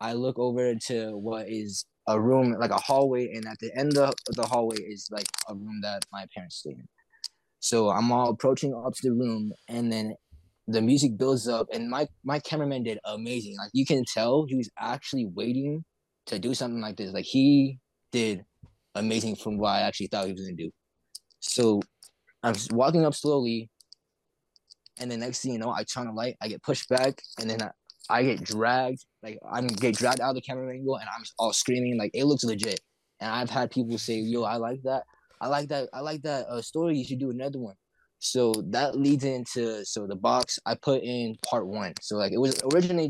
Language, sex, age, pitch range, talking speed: English, male, 20-39, 110-135 Hz, 215 wpm